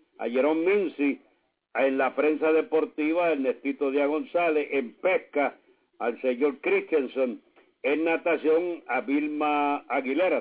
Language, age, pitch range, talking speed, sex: English, 60-79, 140-220 Hz, 115 wpm, male